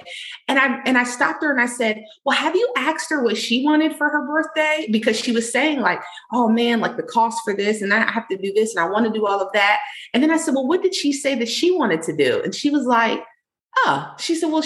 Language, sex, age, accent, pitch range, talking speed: English, female, 30-49, American, 190-300 Hz, 280 wpm